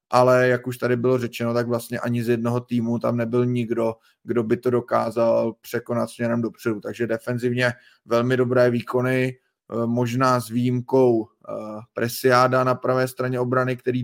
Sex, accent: male, native